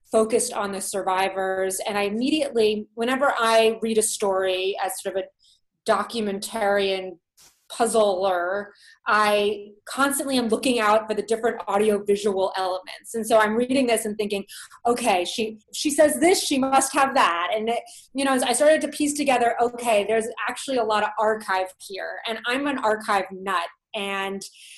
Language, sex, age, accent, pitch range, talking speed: English, female, 30-49, American, 205-250 Hz, 160 wpm